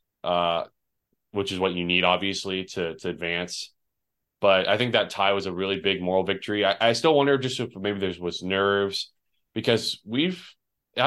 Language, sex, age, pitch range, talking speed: English, male, 20-39, 90-115 Hz, 180 wpm